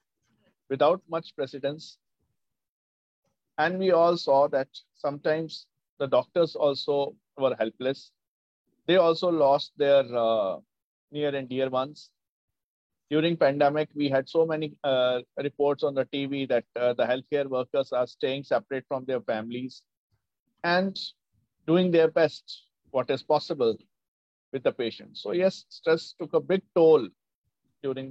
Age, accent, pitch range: 50-69, native, 135-170 Hz